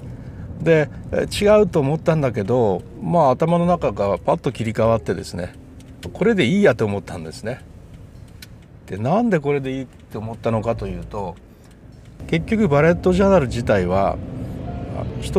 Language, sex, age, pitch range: Japanese, male, 60-79, 100-150 Hz